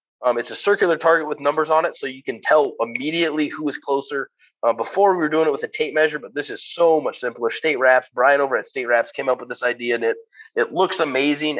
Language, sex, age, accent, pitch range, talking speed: English, male, 30-49, American, 130-165 Hz, 260 wpm